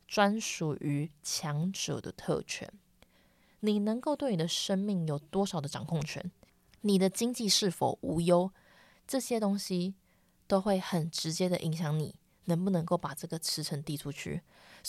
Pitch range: 165-200 Hz